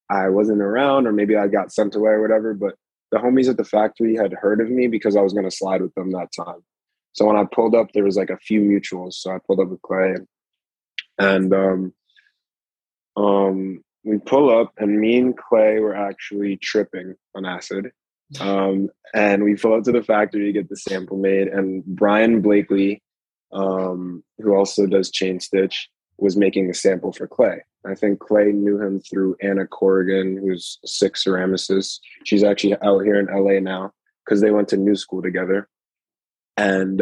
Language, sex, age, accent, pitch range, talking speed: English, male, 20-39, American, 95-105 Hz, 195 wpm